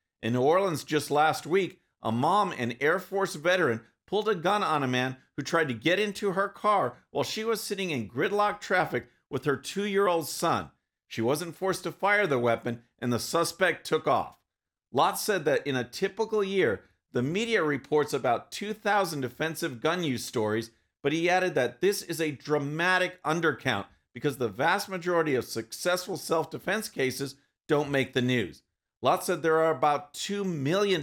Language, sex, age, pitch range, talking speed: English, male, 50-69, 130-185 Hz, 180 wpm